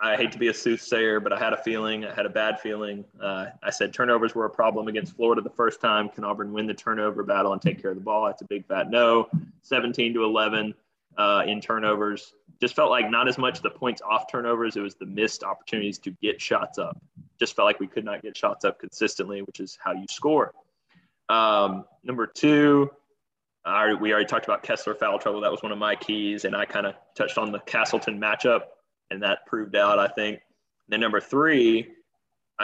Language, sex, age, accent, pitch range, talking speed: English, male, 20-39, American, 105-120 Hz, 220 wpm